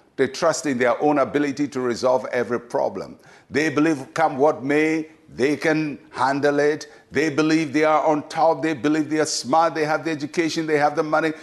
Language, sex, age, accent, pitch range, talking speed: English, male, 60-79, Nigerian, 145-175 Hz, 200 wpm